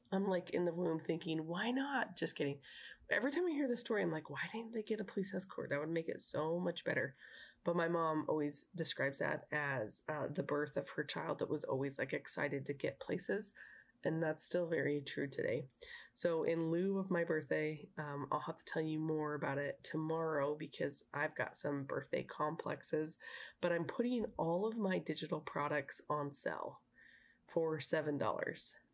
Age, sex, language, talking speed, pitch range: 20-39, female, English, 195 wpm, 150-185 Hz